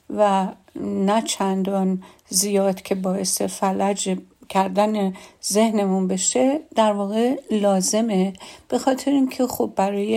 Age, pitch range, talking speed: 50-69, 195-230 Hz, 110 wpm